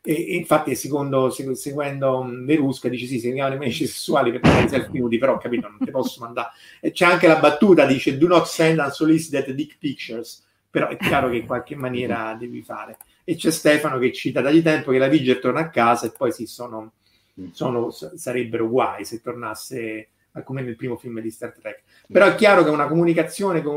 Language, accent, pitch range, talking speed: Italian, native, 115-150 Hz, 195 wpm